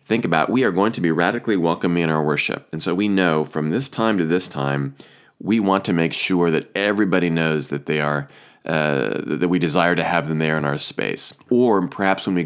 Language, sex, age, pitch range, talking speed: English, male, 30-49, 80-110 Hz, 230 wpm